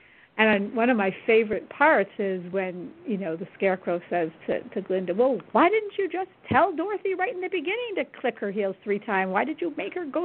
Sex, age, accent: female, 50-69, American